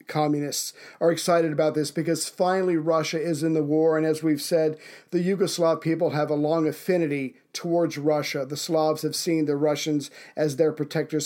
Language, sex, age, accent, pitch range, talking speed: English, male, 40-59, American, 150-165 Hz, 180 wpm